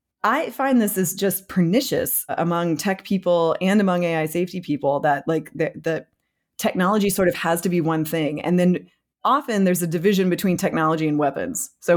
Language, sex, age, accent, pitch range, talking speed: English, female, 20-39, American, 155-205 Hz, 185 wpm